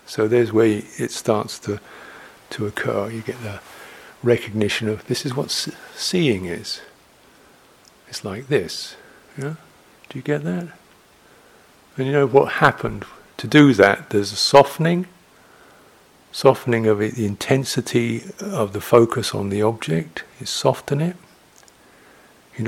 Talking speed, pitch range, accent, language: 145 wpm, 115-130 Hz, British, English